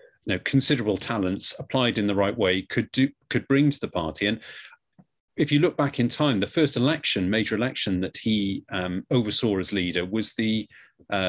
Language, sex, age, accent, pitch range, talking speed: English, male, 40-59, British, 100-135 Hz, 185 wpm